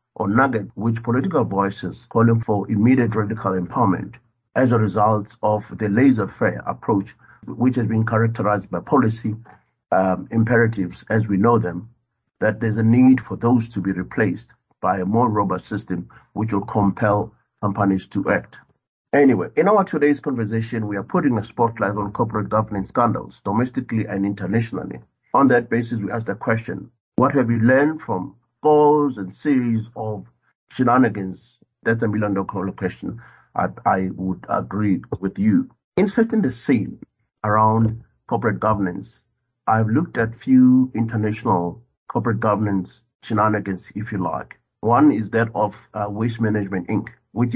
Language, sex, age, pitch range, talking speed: English, male, 50-69, 100-120 Hz, 150 wpm